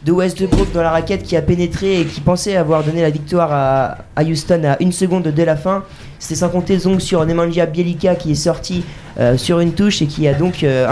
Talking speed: 230 wpm